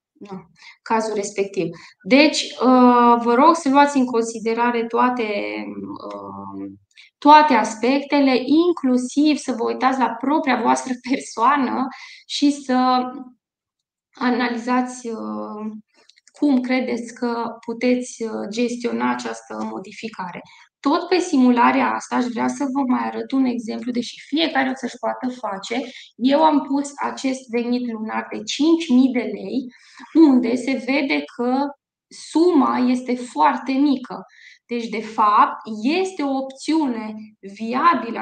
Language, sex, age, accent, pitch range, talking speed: Romanian, female, 20-39, native, 230-280 Hz, 115 wpm